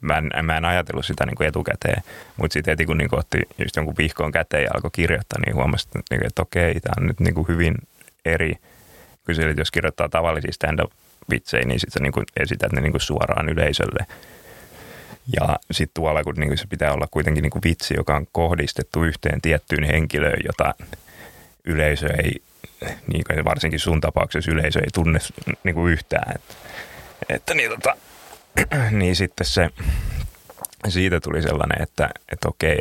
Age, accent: 20-39, native